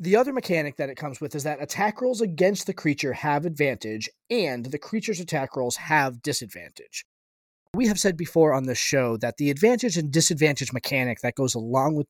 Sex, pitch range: male, 135-180 Hz